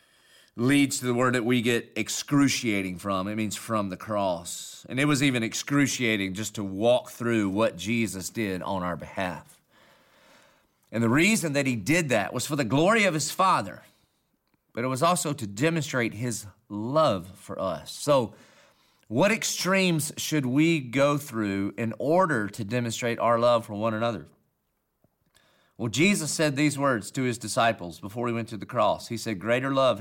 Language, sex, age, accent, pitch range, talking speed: English, male, 40-59, American, 110-145 Hz, 175 wpm